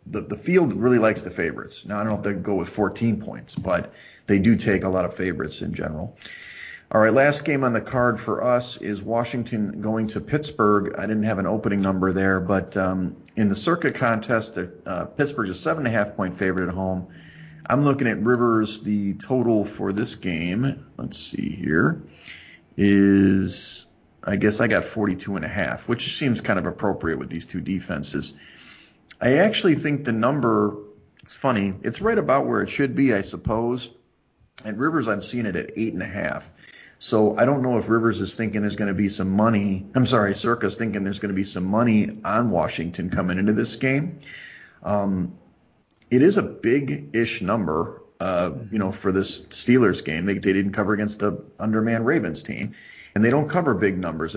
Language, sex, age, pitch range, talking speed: English, male, 40-59, 100-120 Hz, 190 wpm